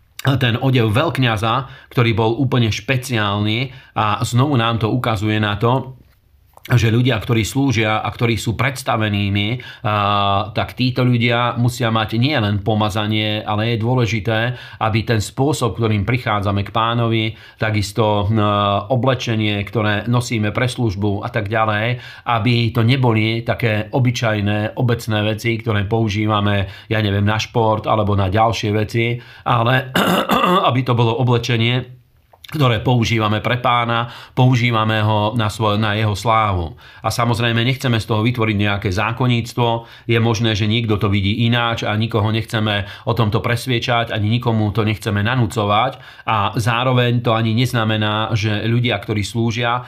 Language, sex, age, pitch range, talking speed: Slovak, male, 40-59, 105-120 Hz, 140 wpm